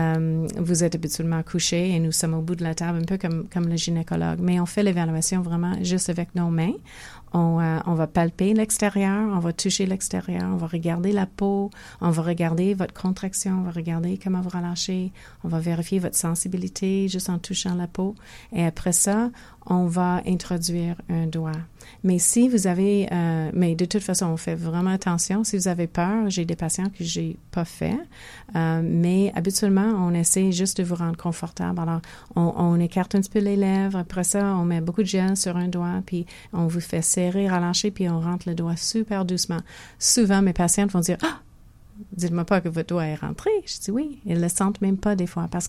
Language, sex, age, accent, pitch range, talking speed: English, female, 40-59, Canadian, 170-195 Hz, 215 wpm